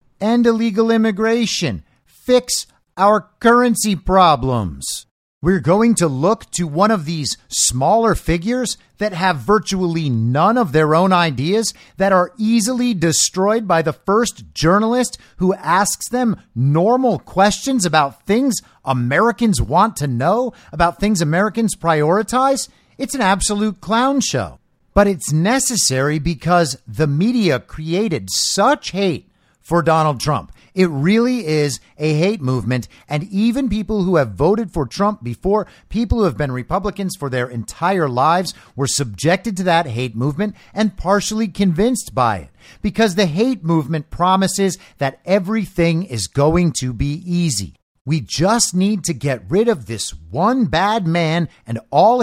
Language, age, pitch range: English, 50-69, 150-220 Hz